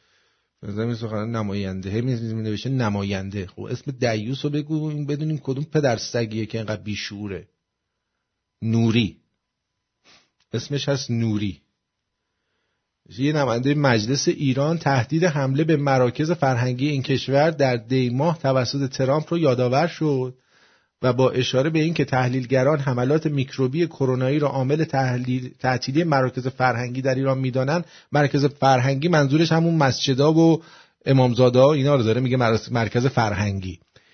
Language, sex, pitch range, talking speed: English, male, 120-155 Hz, 125 wpm